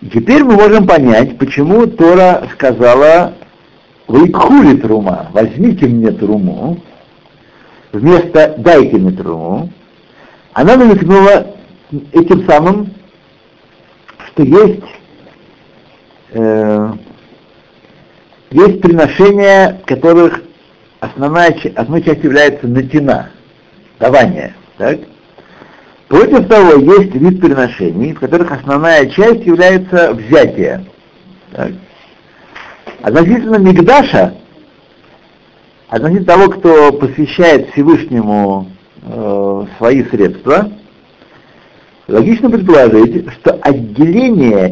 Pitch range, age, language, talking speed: 125-195 Hz, 60-79, Russian, 80 wpm